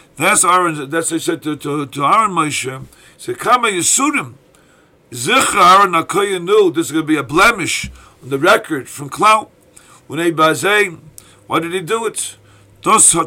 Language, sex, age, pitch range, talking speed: English, male, 50-69, 155-200 Hz, 170 wpm